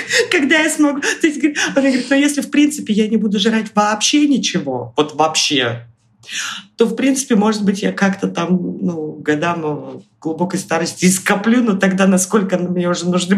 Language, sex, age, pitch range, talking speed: Russian, female, 20-39, 150-200 Hz, 160 wpm